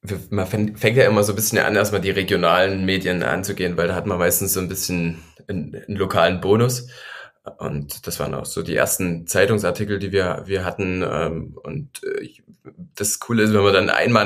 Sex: male